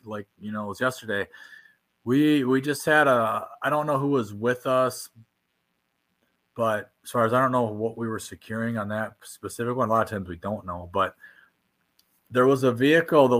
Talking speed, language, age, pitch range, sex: 205 wpm, English, 30-49, 105-130 Hz, male